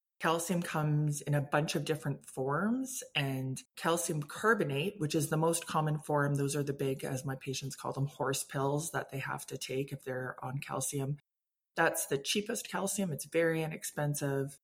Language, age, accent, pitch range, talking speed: English, 20-39, American, 130-155 Hz, 180 wpm